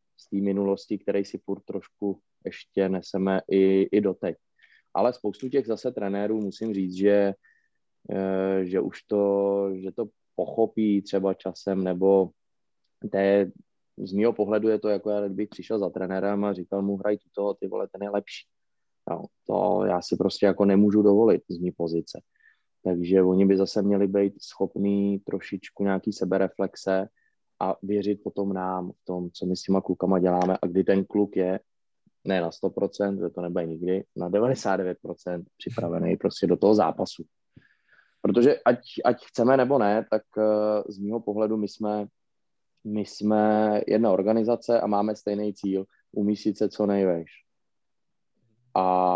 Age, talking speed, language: 20-39, 155 wpm, Czech